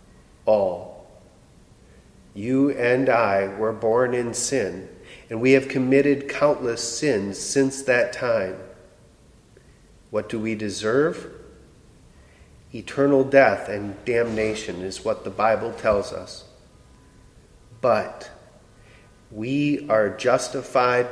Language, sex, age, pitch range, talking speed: English, male, 40-59, 100-135 Hz, 100 wpm